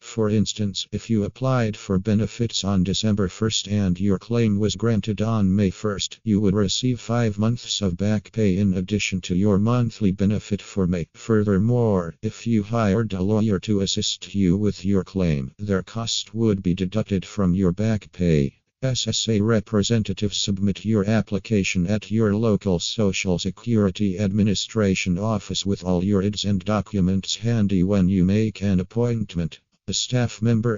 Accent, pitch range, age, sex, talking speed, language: American, 95-110 Hz, 50-69, male, 160 wpm, English